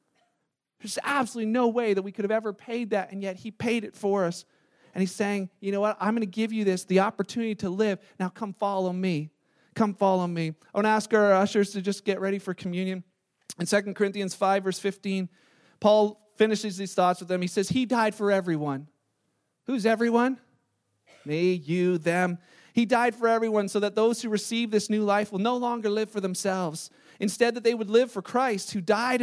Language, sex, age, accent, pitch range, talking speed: English, male, 40-59, American, 185-220 Hz, 210 wpm